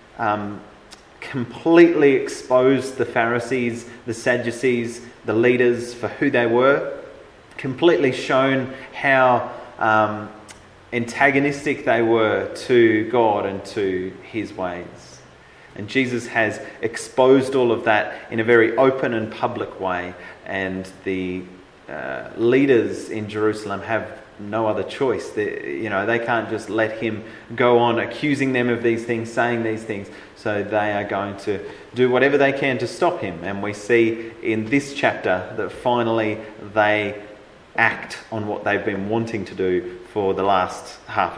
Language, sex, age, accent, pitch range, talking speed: English, male, 30-49, Australian, 105-130 Hz, 145 wpm